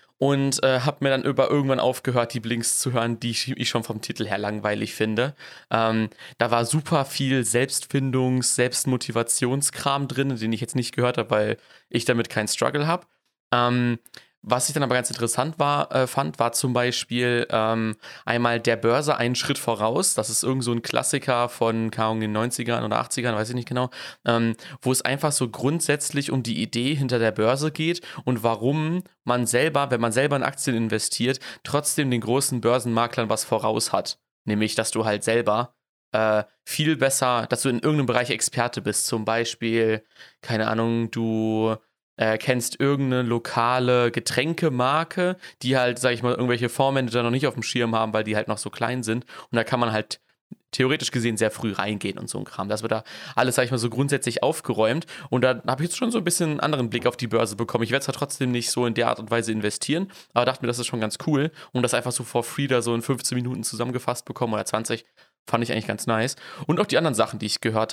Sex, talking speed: male, 215 wpm